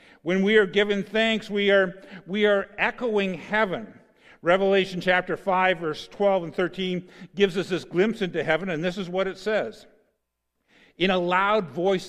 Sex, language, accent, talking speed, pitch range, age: male, English, American, 165 wpm, 170-210 Hz, 50-69